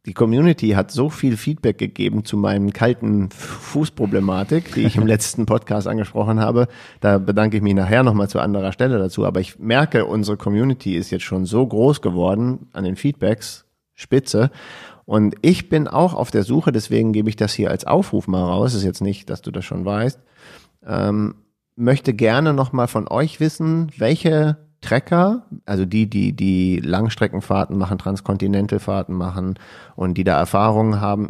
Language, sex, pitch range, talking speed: German, male, 100-135 Hz, 175 wpm